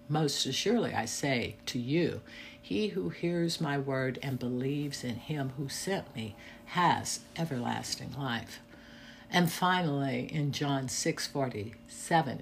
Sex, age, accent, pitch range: female, 60-79, American, 120-155 Hz